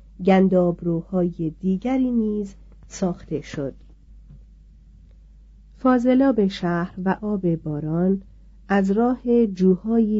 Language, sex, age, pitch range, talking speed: Persian, female, 40-59, 165-215 Hz, 80 wpm